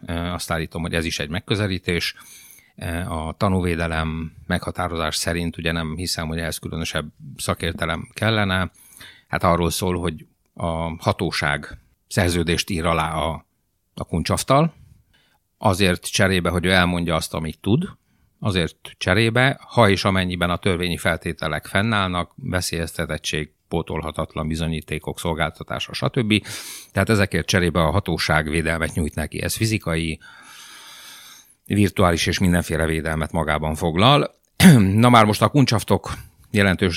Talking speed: 120 wpm